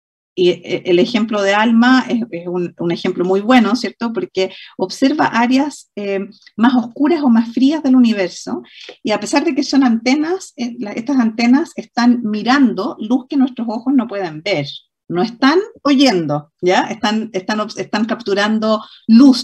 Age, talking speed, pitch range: 40-59, 150 wpm, 185-240 Hz